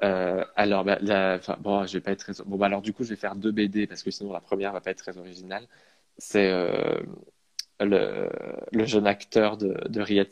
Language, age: French, 20-39